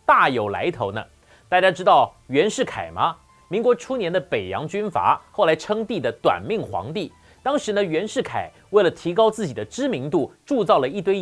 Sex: male